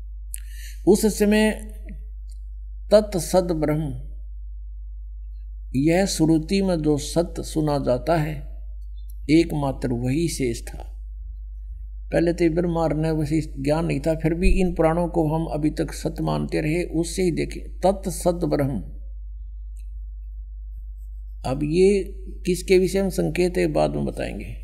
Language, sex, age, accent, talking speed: English, male, 60-79, Indian, 120 wpm